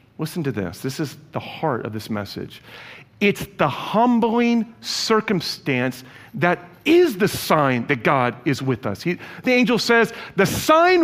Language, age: English, 40-59